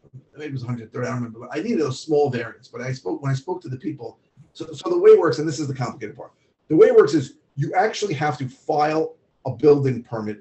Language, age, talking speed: English, 40-59, 270 wpm